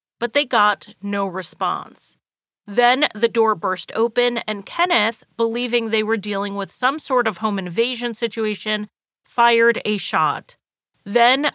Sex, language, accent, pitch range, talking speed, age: female, English, American, 200-255 Hz, 140 wpm, 30-49